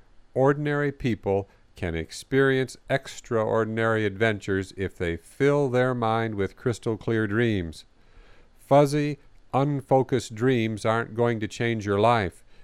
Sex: male